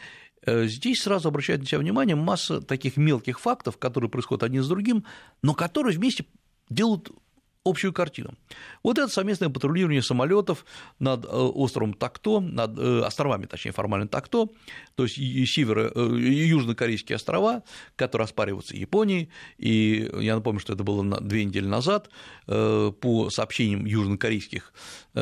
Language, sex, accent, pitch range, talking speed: Russian, male, native, 110-170 Hz, 125 wpm